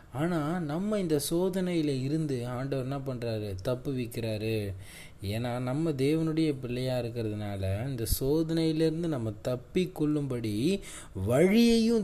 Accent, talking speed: native, 105 wpm